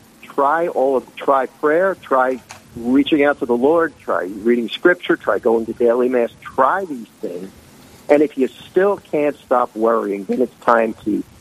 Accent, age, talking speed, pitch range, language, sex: American, 50-69, 175 wpm, 115-155 Hz, English, male